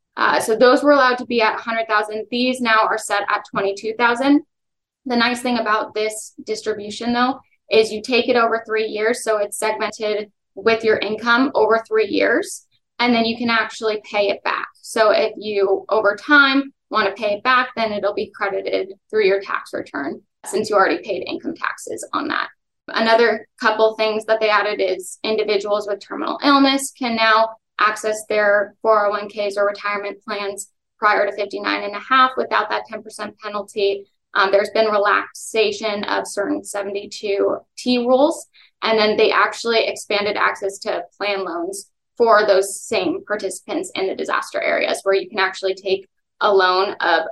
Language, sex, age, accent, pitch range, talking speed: English, female, 10-29, American, 205-230 Hz, 170 wpm